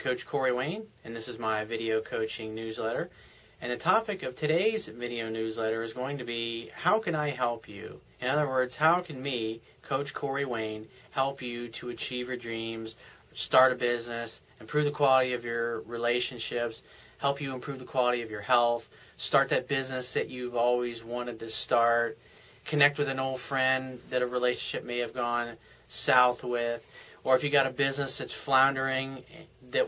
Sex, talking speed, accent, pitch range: male, 180 wpm, American, 115-140 Hz